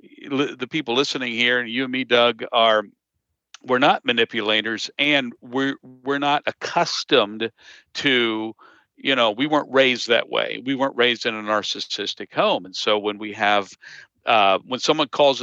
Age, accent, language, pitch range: 50-69, American, English, 105-130 Hz